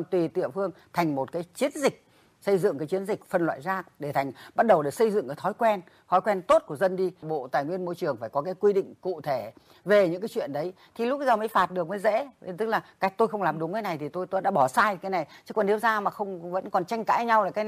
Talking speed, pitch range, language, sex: 295 wpm, 155-195 Hz, Vietnamese, female